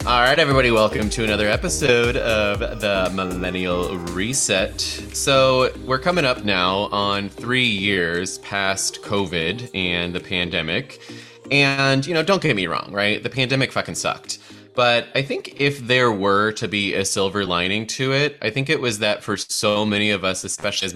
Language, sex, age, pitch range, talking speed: English, male, 20-39, 90-115 Hz, 175 wpm